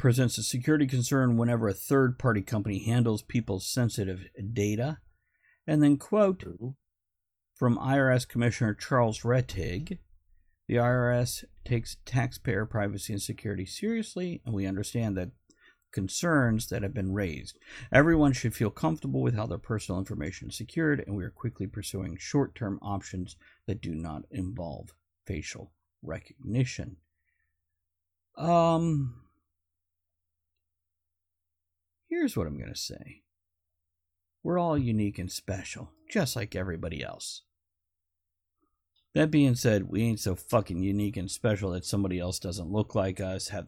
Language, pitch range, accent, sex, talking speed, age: English, 80-120 Hz, American, male, 130 wpm, 50-69